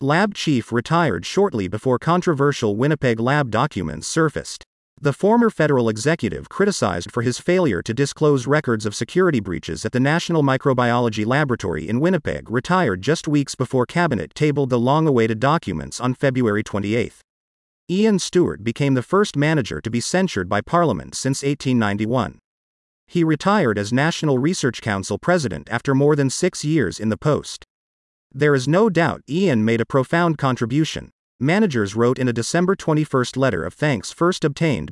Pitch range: 115-165 Hz